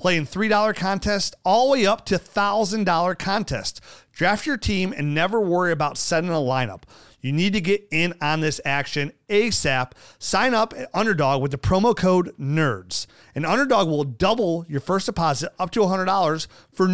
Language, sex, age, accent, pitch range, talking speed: English, male, 40-59, American, 135-190 Hz, 175 wpm